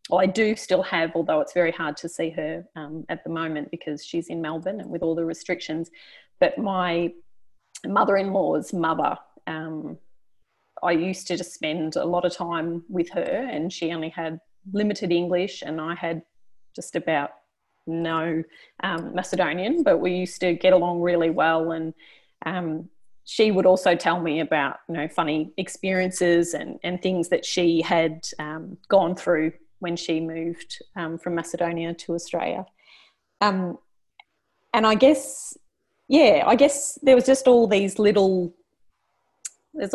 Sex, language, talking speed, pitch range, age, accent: female, English, 160 wpm, 165-190 Hz, 30-49, Australian